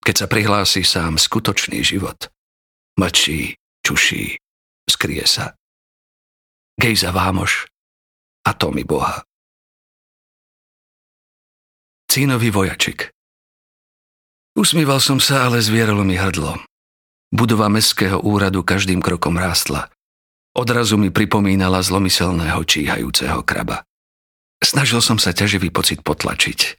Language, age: Slovak, 50-69